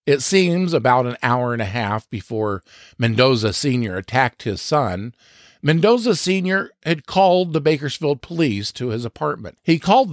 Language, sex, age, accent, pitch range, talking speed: English, male, 50-69, American, 110-150 Hz, 155 wpm